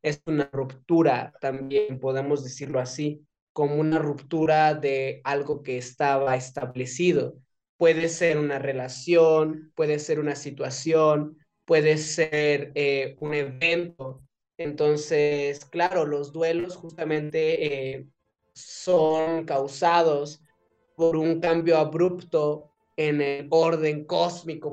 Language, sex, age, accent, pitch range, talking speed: Spanish, male, 20-39, Mexican, 140-165 Hz, 105 wpm